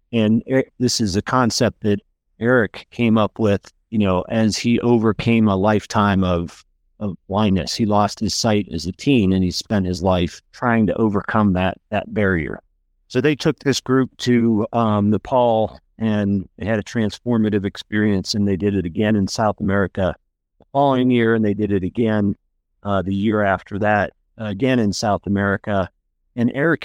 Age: 50-69